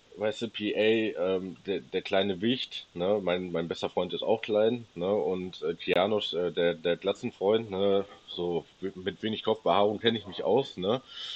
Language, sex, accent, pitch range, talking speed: German, male, German, 85-105 Hz, 180 wpm